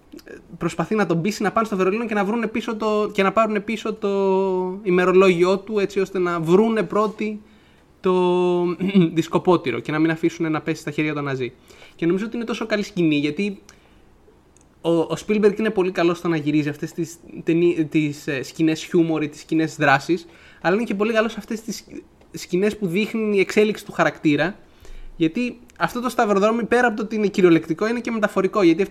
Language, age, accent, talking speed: Greek, 20-39, native, 185 wpm